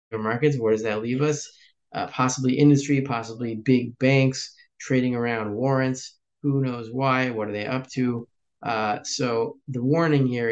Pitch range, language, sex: 115-140 Hz, English, male